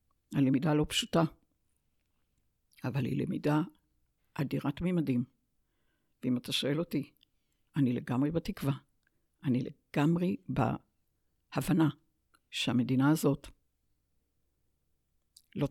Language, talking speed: Hebrew, 80 wpm